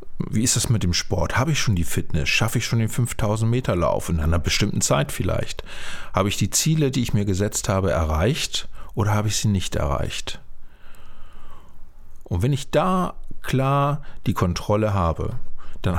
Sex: male